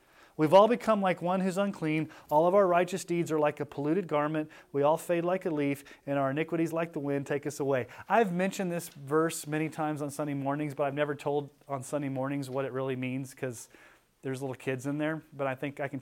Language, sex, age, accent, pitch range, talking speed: English, male, 30-49, American, 140-175 Hz, 235 wpm